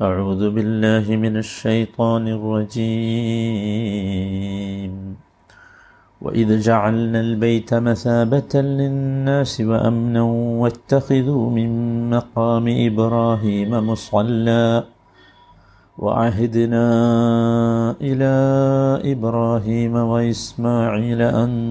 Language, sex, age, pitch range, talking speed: Malayalam, male, 50-69, 105-120 Hz, 60 wpm